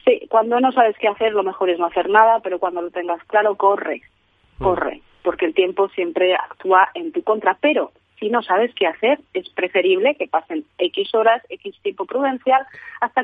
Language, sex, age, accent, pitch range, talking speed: Spanish, female, 30-49, Spanish, 180-250 Hz, 195 wpm